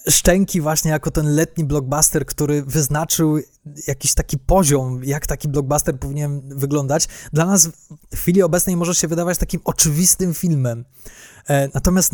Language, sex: Polish, male